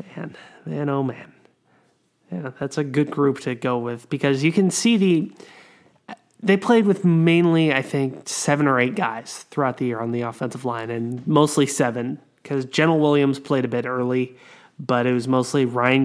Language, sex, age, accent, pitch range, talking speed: English, male, 20-39, American, 125-145 Hz, 185 wpm